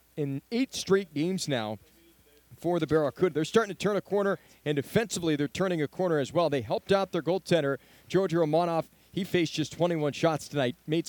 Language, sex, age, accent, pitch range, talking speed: English, male, 40-59, American, 140-190 Hz, 195 wpm